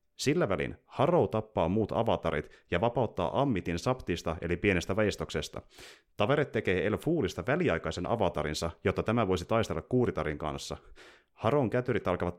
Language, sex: Finnish, male